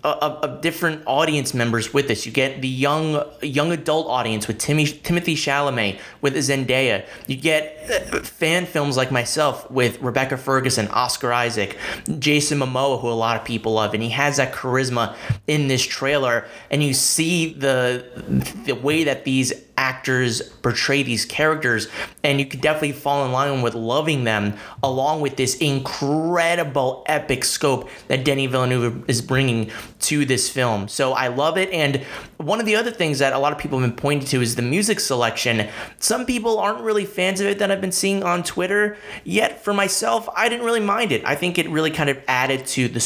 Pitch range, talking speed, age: 125-160 Hz, 190 wpm, 30-49